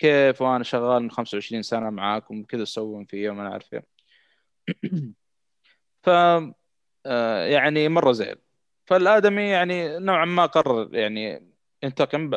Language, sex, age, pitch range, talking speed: Arabic, male, 20-39, 110-150 Hz, 110 wpm